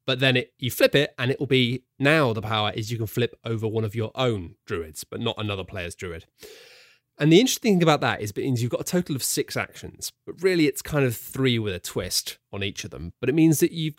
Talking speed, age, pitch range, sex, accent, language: 255 wpm, 30-49, 110-140 Hz, male, British, English